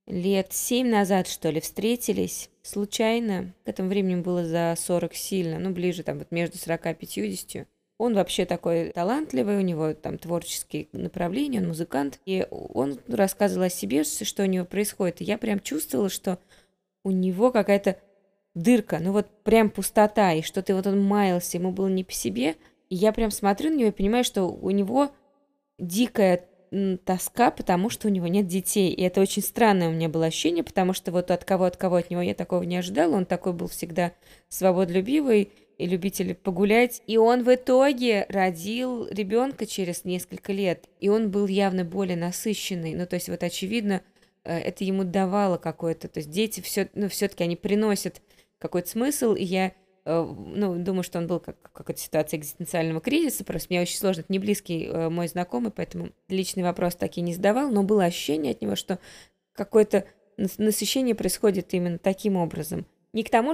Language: Russian